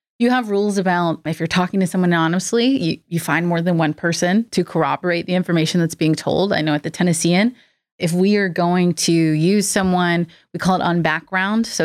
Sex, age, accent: female, 20-39, American